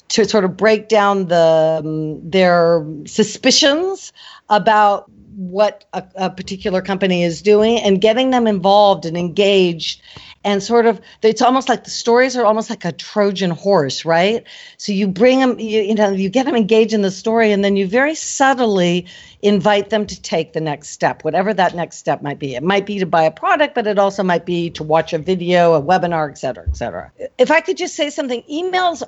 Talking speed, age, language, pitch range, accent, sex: 205 wpm, 50-69, English, 175-235 Hz, American, female